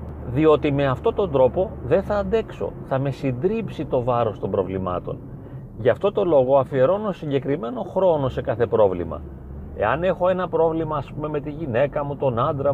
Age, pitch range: 30-49, 125-175 Hz